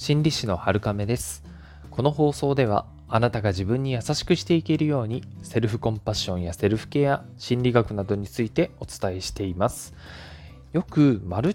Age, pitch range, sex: 20-39, 90-140 Hz, male